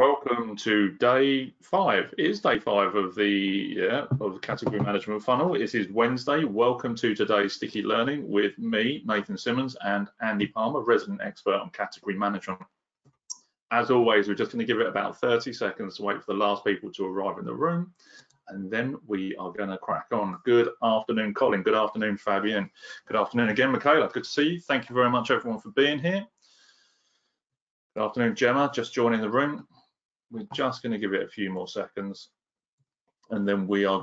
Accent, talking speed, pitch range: British, 185 wpm, 100-130 Hz